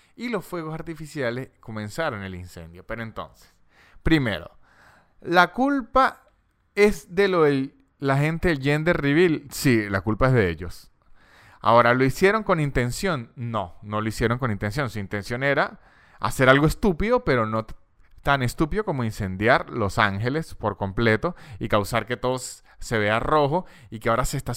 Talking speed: 160 wpm